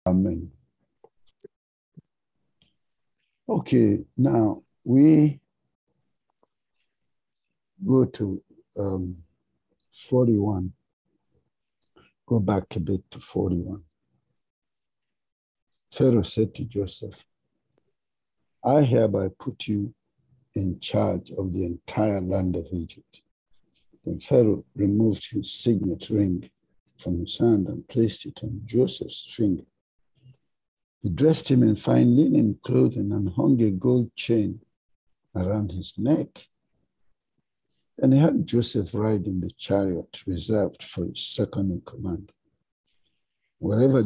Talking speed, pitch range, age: 100 wpm, 90-120 Hz, 60-79